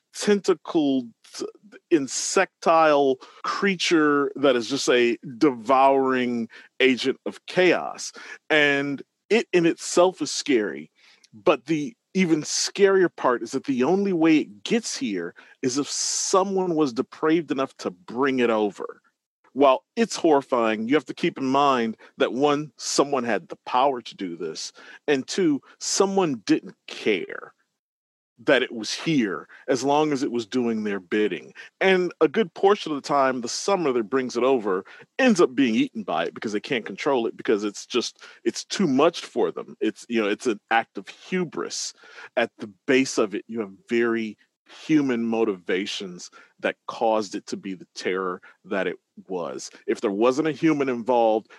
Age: 40-59